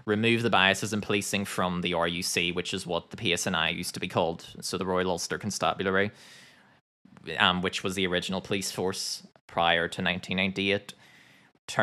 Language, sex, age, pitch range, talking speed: English, male, 20-39, 95-110 Hz, 160 wpm